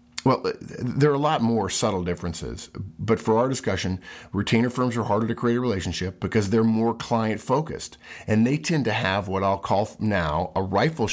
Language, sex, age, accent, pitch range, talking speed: English, male, 50-69, American, 90-115 Hz, 195 wpm